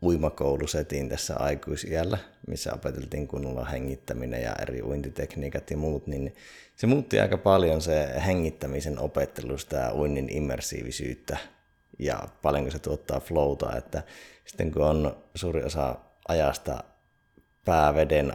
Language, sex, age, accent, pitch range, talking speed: Finnish, male, 30-49, native, 70-80 Hz, 120 wpm